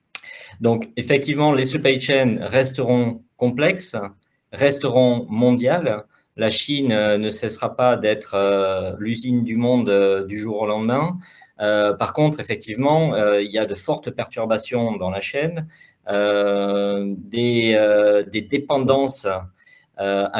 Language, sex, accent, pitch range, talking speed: French, male, French, 105-135 Hz, 125 wpm